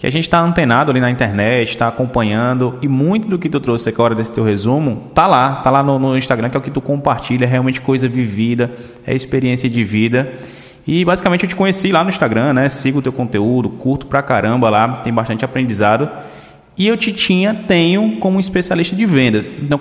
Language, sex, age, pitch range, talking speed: Portuguese, male, 20-39, 125-165 Hz, 220 wpm